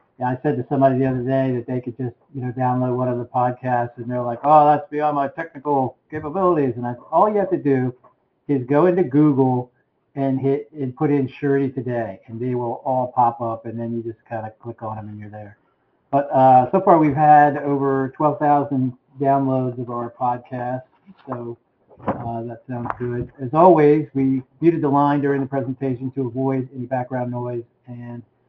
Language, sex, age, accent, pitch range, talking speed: English, male, 50-69, American, 125-150 Hz, 200 wpm